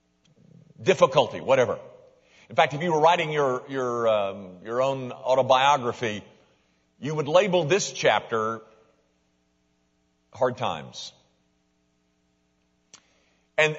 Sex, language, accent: male, English, American